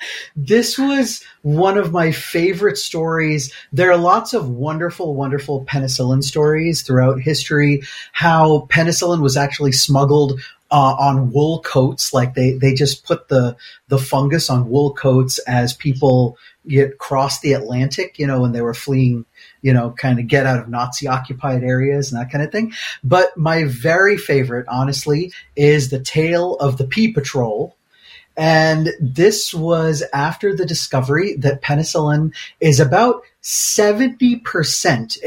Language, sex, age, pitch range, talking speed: English, male, 30-49, 130-165 Hz, 150 wpm